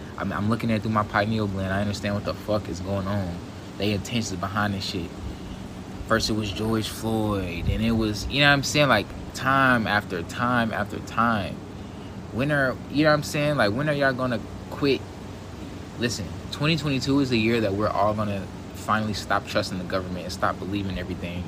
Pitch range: 95-115 Hz